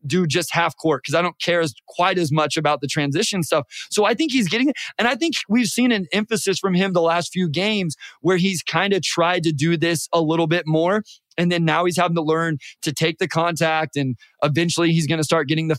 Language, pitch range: English, 155-195 Hz